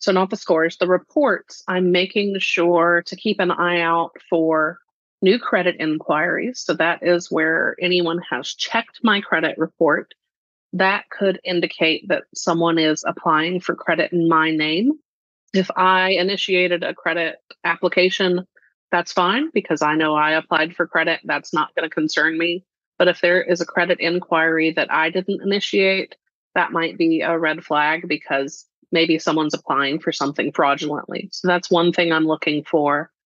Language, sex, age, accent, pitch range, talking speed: English, female, 30-49, American, 160-185 Hz, 165 wpm